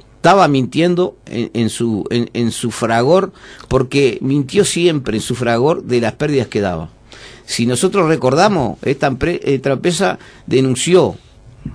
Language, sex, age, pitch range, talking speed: Spanish, male, 50-69, 115-155 Hz, 135 wpm